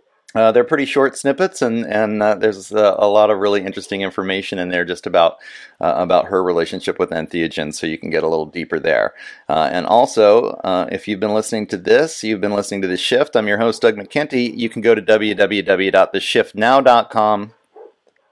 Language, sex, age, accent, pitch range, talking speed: English, male, 40-59, American, 95-120 Hz, 195 wpm